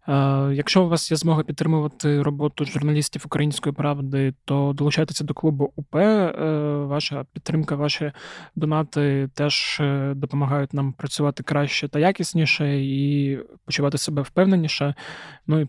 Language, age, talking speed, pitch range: Ukrainian, 20-39, 120 wpm, 140-160 Hz